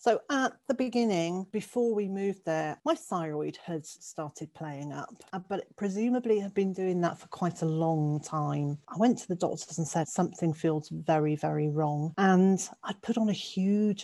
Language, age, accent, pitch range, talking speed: English, 40-59, British, 160-200 Hz, 190 wpm